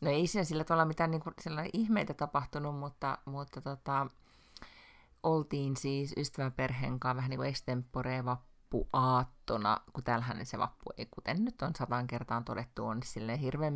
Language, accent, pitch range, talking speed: Finnish, native, 125-155 Hz, 140 wpm